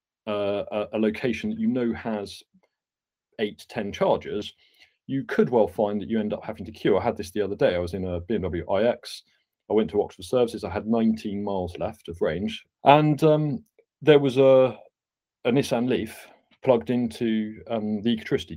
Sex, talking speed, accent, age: male, 195 wpm, British, 30-49